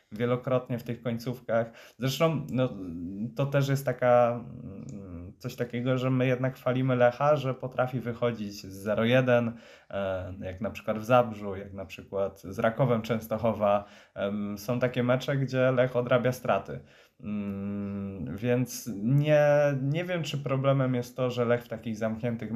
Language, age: Polish, 20-39